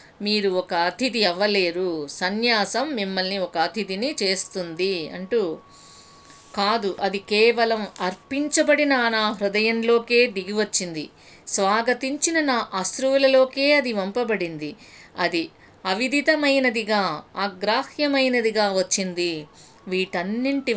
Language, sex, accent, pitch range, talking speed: Telugu, female, native, 185-255 Hz, 80 wpm